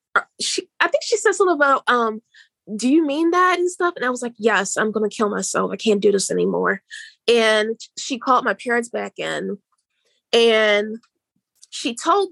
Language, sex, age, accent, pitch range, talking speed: English, female, 20-39, American, 215-270 Hz, 190 wpm